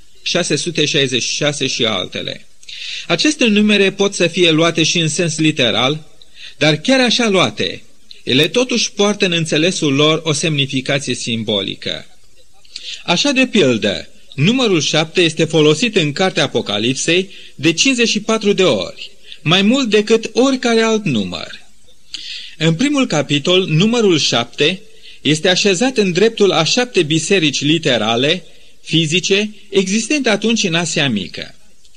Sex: male